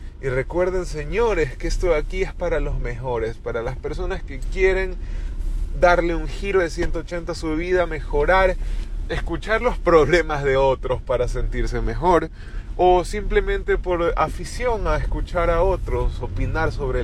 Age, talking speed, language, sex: 30-49, 150 wpm, English, male